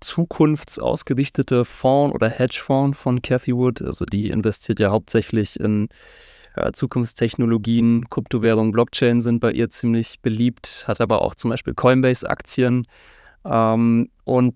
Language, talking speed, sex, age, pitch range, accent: German, 115 wpm, male, 20-39, 115-135 Hz, German